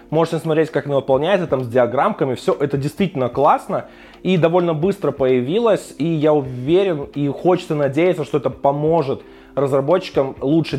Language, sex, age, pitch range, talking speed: Russian, male, 20-39, 135-175 Hz, 150 wpm